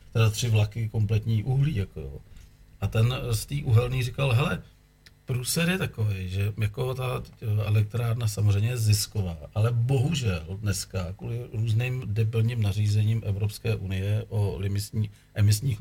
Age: 40-59